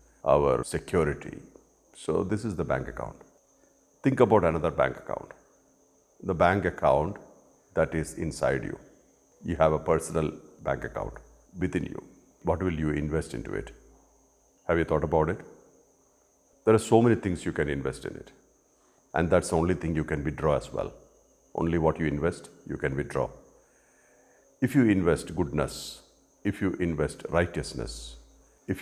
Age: 50-69